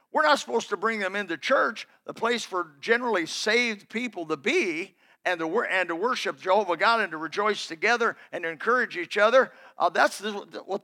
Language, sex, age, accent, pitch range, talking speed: English, male, 50-69, American, 170-240 Hz, 200 wpm